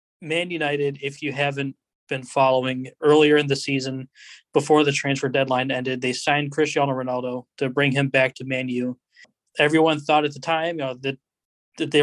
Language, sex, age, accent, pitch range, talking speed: English, male, 20-39, American, 130-145 Hz, 175 wpm